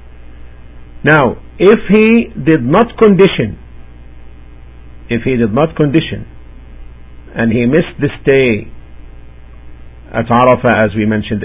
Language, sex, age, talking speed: English, male, 50-69, 110 wpm